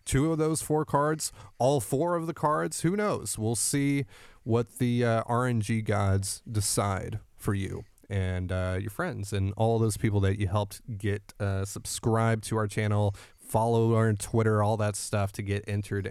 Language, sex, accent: English, male, American